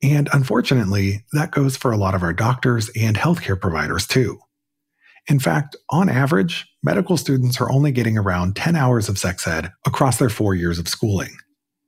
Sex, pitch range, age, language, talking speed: male, 100-145 Hz, 40-59, English, 175 wpm